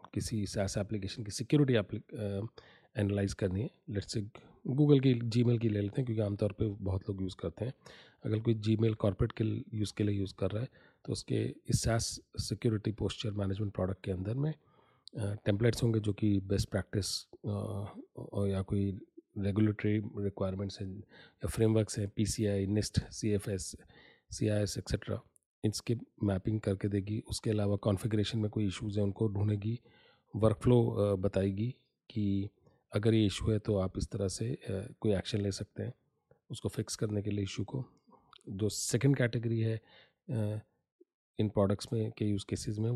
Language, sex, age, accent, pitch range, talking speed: Hindi, male, 40-59, native, 100-115 Hz, 160 wpm